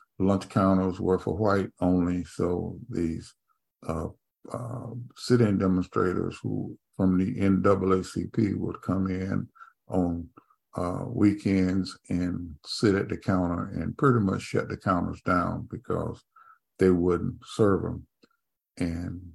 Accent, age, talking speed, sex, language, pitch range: American, 50-69, 125 wpm, male, English, 95-115 Hz